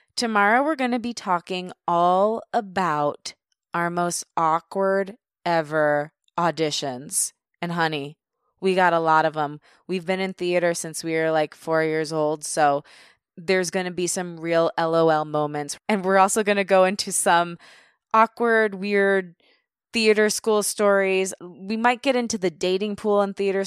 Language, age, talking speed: English, 20-39, 160 wpm